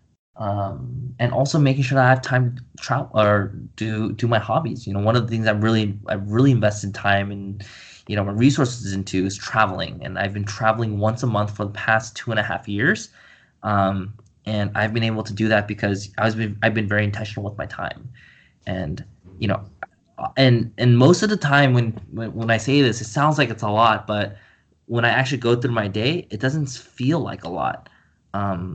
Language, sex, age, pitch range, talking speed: English, male, 20-39, 105-125 Hz, 220 wpm